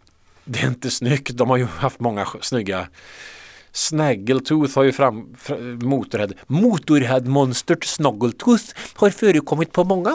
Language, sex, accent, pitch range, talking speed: Swedish, male, Norwegian, 100-150 Hz, 130 wpm